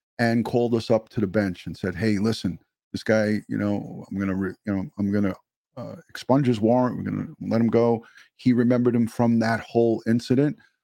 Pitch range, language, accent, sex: 105-120 Hz, English, American, male